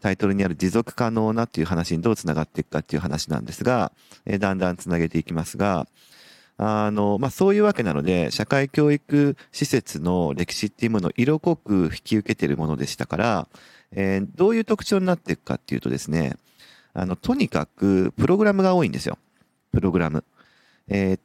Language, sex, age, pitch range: Japanese, male, 40-59, 90-125 Hz